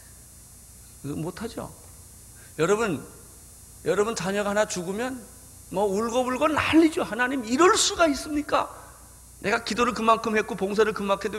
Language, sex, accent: Korean, male, native